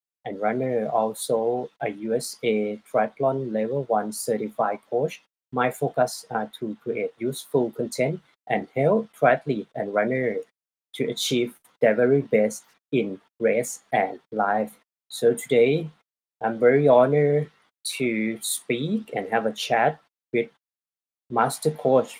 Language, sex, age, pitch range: Thai, male, 20-39, 115-145 Hz